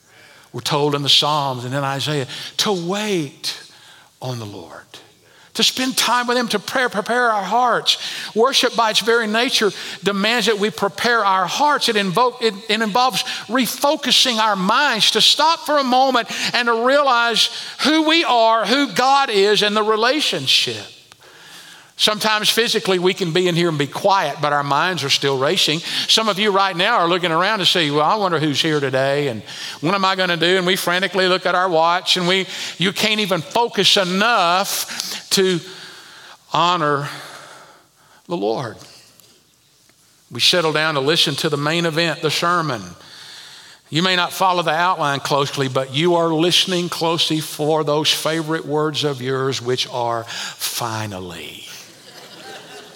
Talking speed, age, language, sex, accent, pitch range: 165 wpm, 50-69, English, male, American, 155-220 Hz